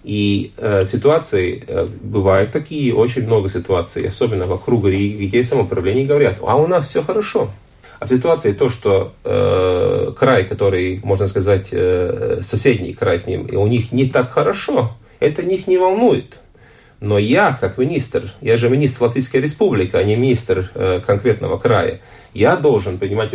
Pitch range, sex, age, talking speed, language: 100-145 Hz, male, 30-49, 155 wpm, Russian